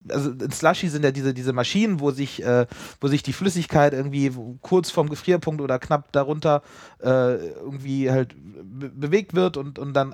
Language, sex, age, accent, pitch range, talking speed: German, male, 30-49, German, 130-165 Hz, 160 wpm